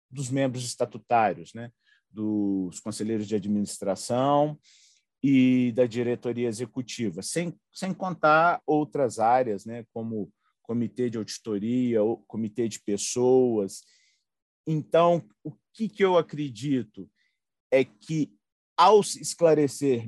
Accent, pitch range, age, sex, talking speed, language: Brazilian, 110-150 Hz, 40-59, male, 110 wpm, Portuguese